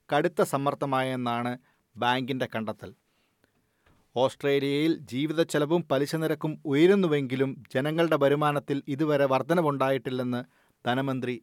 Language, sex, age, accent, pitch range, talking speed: Malayalam, male, 40-59, native, 130-155 Hz, 75 wpm